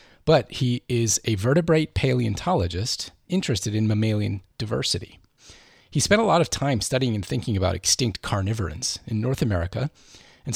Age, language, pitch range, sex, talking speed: 30-49, English, 100-135 Hz, male, 150 wpm